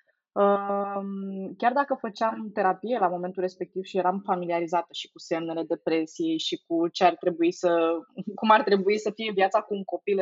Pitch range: 180-205 Hz